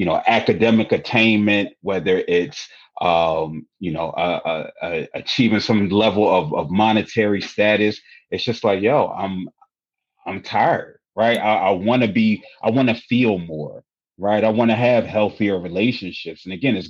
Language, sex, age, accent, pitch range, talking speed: English, male, 30-49, American, 90-115 Hz, 165 wpm